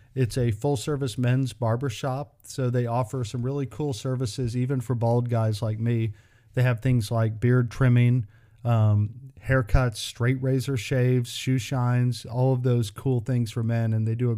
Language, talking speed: English, 175 wpm